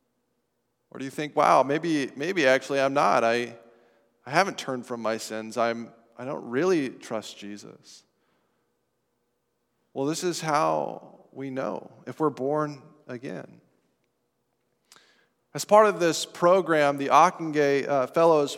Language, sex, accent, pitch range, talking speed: English, male, American, 125-165 Hz, 130 wpm